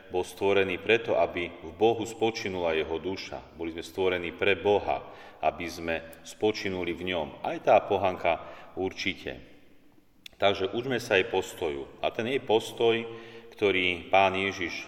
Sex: male